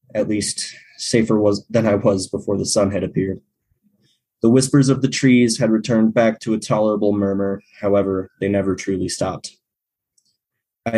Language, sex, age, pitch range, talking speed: English, male, 20-39, 100-125 Hz, 165 wpm